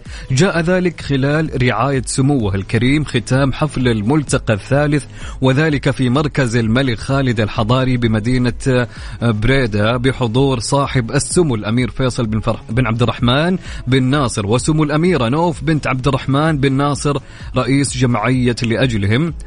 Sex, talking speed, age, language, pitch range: male, 125 wpm, 30-49, English, 120-145 Hz